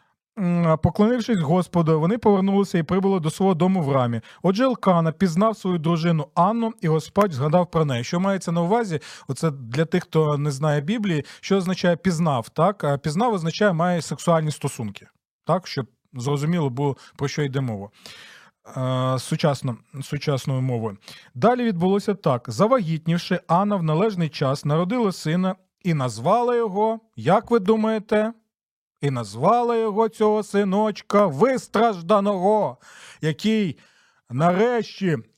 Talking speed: 130 wpm